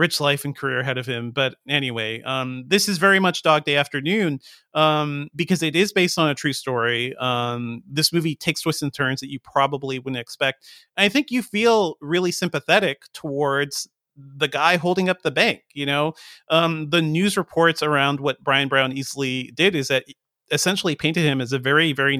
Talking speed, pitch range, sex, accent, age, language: 195 wpm, 130-155 Hz, male, American, 40-59, English